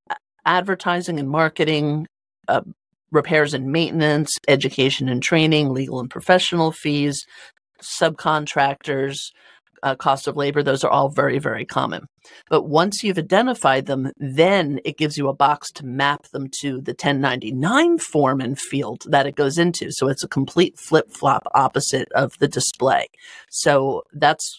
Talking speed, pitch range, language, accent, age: 150 wpm, 135-160 Hz, English, American, 40-59